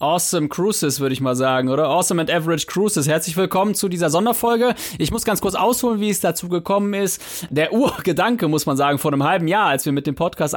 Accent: German